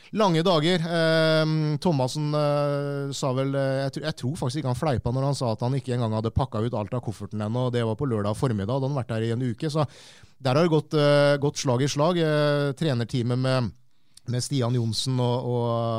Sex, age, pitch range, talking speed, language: male, 30-49, 115-145 Hz, 190 wpm, English